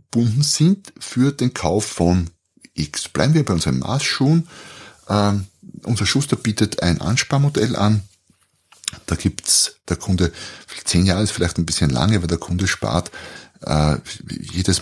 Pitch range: 85-125 Hz